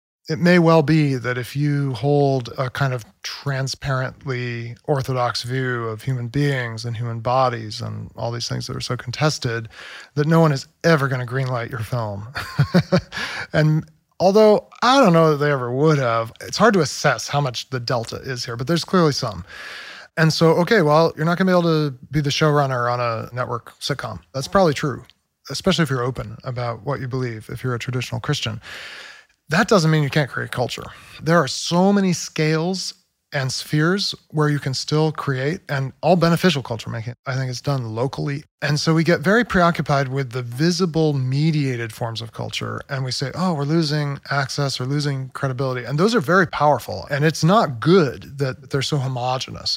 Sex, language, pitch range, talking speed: male, English, 125-155 Hz, 195 wpm